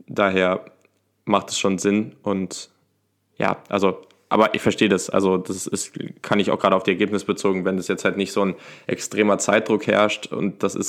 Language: German